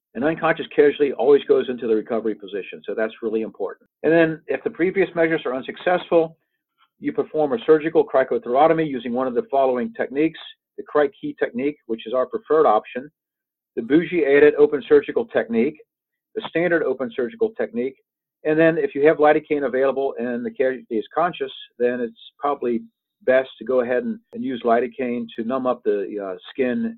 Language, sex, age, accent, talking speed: English, male, 50-69, American, 175 wpm